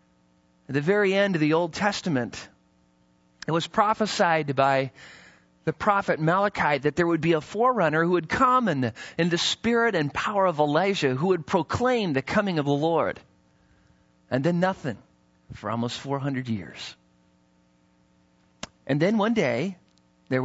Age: 40-59